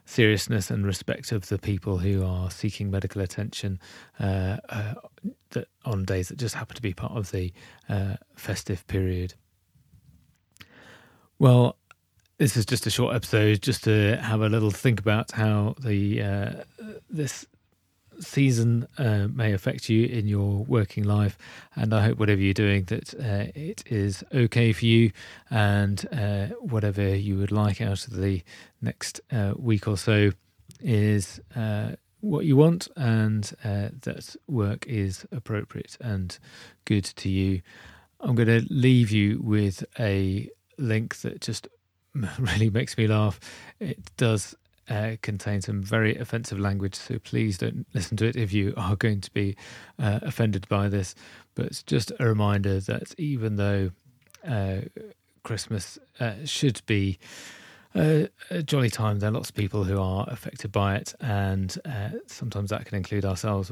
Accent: British